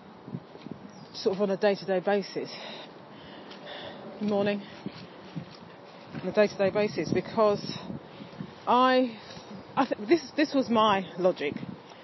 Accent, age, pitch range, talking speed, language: British, 30-49, 195-255 Hz, 125 wpm, English